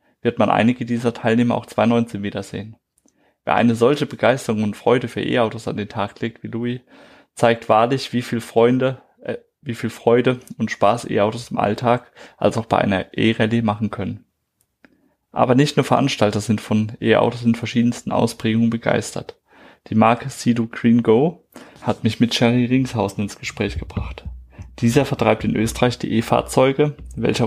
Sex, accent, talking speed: male, German, 165 wpm